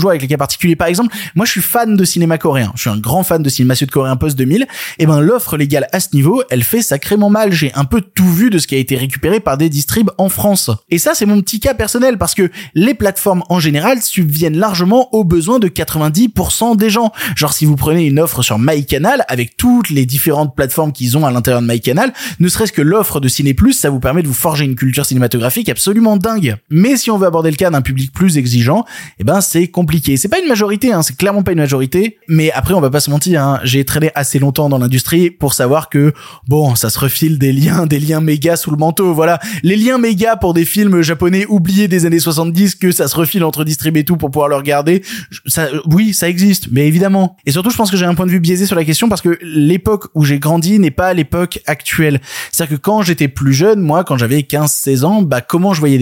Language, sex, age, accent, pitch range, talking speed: French, male, 20-39, French, 145-190 Hz, 250 wpm